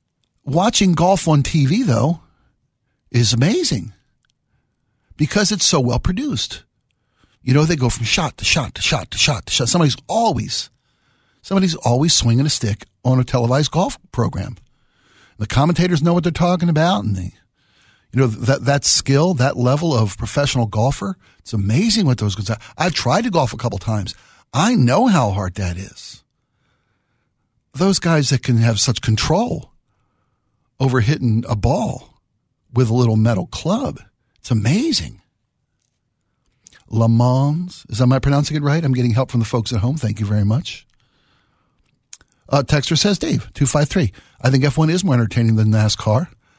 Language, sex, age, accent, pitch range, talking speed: English, male, 50-69, American, 115-155 Hz, 160 wpm